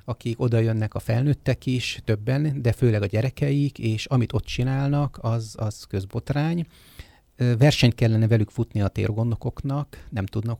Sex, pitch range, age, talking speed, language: male, 110-125 Hz, 30-49, 145 wpm, Hungarian